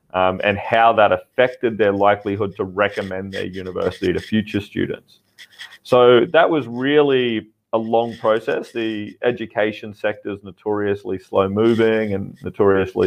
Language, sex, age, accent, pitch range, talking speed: English, male, 30-49, Australian, 95-115 Hz, 140 wpm